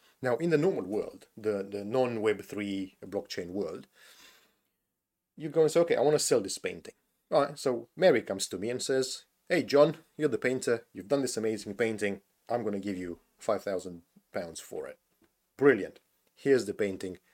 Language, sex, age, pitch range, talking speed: English, male, 30-49, 110-150 Hz, 180 wpm